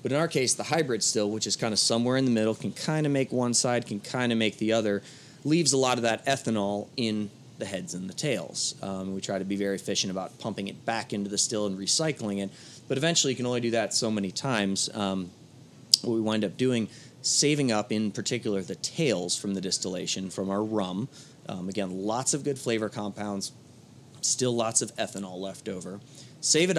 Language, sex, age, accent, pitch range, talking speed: English, male, 30-49, American, 100-130 Hz, 220 wpm